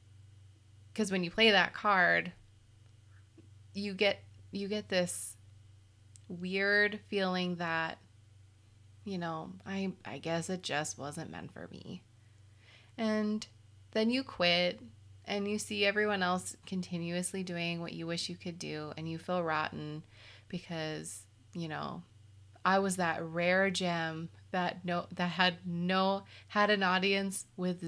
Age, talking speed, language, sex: 20-39, 135 wpm, English, female